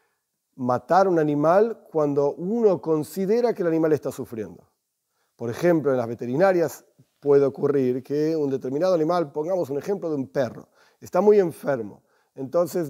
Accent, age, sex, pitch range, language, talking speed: Argentinian, 40-59, male, 145-215 Hz, Spanish, 150 wpm